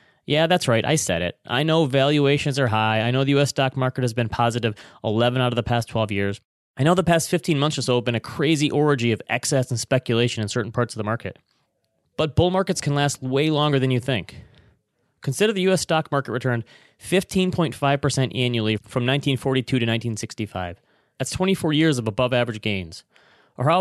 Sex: male